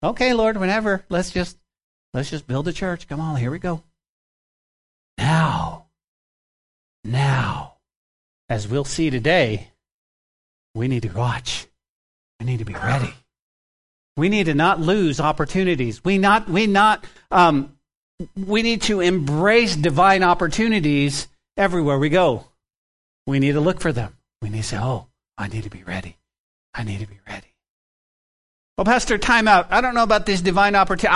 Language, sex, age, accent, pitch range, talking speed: English, male, 40-59, American, 125-200 Hz, 160 wpm